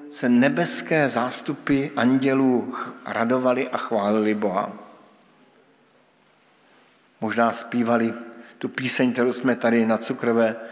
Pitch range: 115-135 Hz